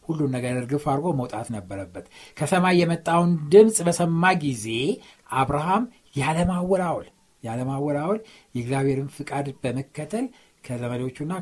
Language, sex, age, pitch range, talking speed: Amharic, male, 60-79, 125-180 Hz, 105 wpm